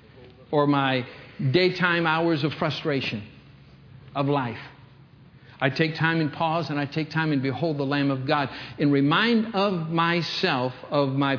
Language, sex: English, male